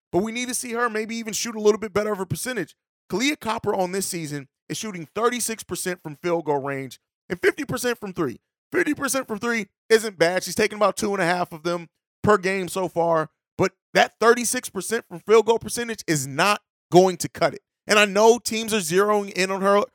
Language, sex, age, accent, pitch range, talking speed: English, male, 30-49, American, 170-220 Hz, 215 wpm